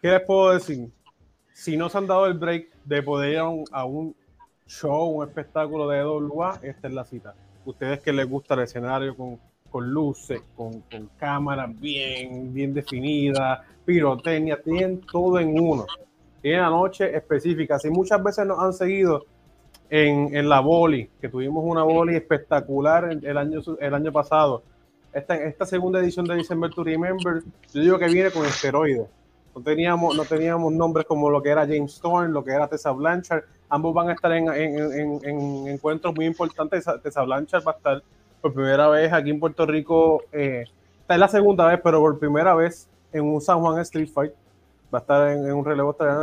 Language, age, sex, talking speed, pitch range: Spanish, 20-39, male, 190 wpm, 140-165 Hz